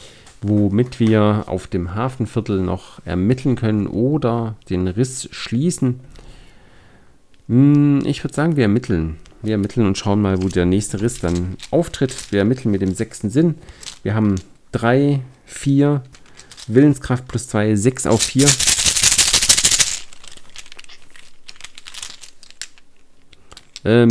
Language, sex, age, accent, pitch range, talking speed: German, male, 50-69, German, 95-130 Hz, 110 wpm